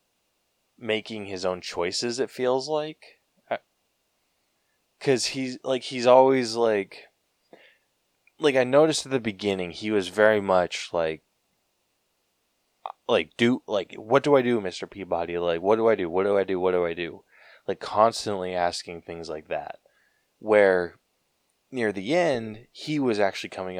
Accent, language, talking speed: American, English, 150 wpm